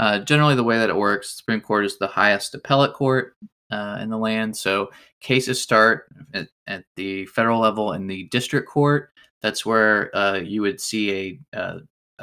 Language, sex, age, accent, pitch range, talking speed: English, male, 20-39, American, 100-115 Hz, 185 wpm